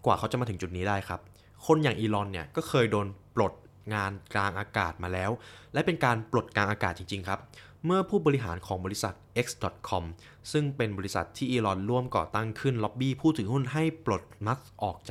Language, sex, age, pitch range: Thai, male, 20-39, 95-120 Hz